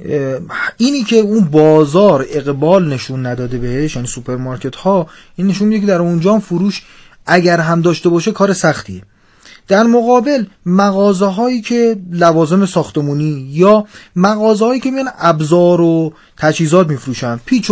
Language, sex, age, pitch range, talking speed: Persian, male, 30-49, 150-215 Hz, 135 wpm